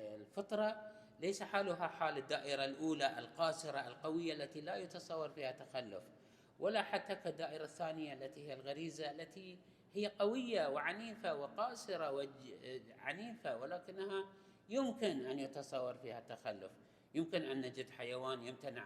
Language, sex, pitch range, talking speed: Arabic, male, 130-165 Hz, 120 wpm